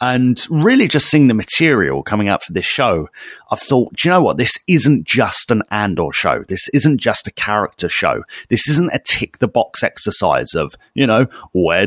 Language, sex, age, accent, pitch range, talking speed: English, male, 30-49, British, 110-160 Hz, 200 wpm